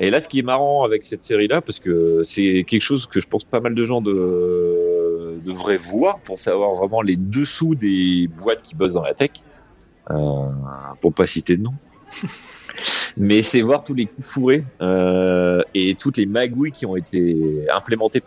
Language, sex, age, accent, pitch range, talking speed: French, male, 30-49, French, 85-135 Hz, 190 wpm